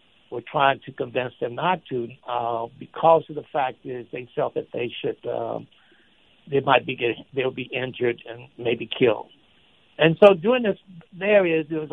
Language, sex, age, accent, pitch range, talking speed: English, male, 60-79, American, 130-160 Hz, 185 wpm